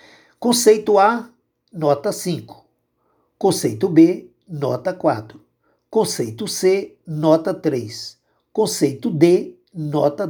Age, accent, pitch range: 60-79, Brazilian, 145-205 Hz